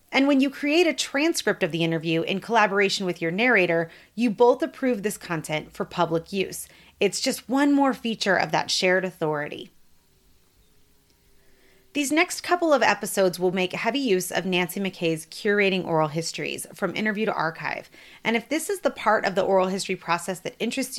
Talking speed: 180 wpm